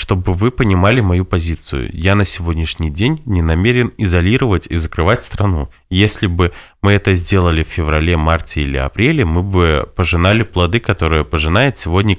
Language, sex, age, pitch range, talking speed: Russian, male, 20-39, 85-115 Hz, 160 wpm